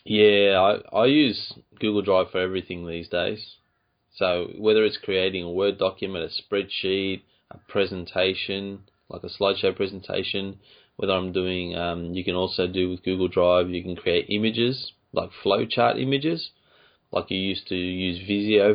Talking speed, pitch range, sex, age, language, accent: 155 wpm, 90-105 Hz, male, 20-39, English, Australian